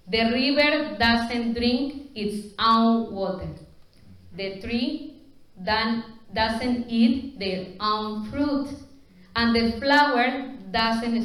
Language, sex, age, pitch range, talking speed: English, female, 30-49, 195-245 Hz, 95 wpm